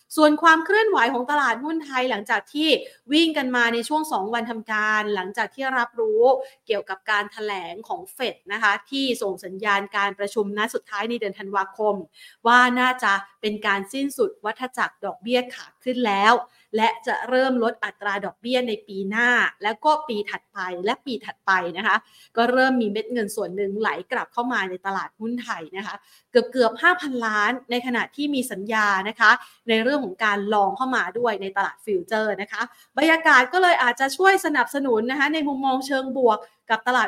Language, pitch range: Thai, 205-270 Hz